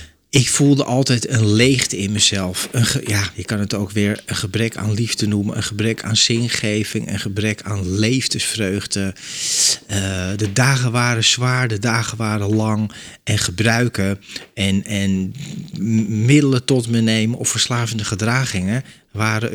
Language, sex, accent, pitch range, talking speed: Dutch, male, Dutch, 105-130 Hz, 155 wpm